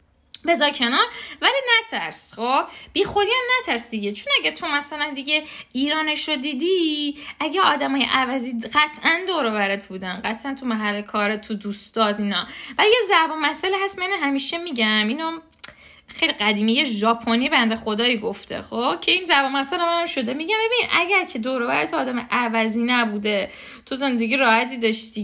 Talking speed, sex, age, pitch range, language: 165 wpm, female, 10-29, 215-290 Hz, Persian